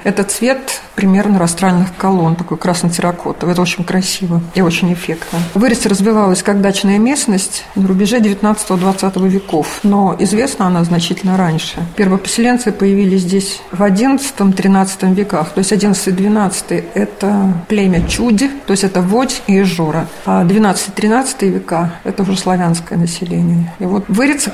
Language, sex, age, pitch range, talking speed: Russian, female, 50-69, 185-210 Hz, 140 wpm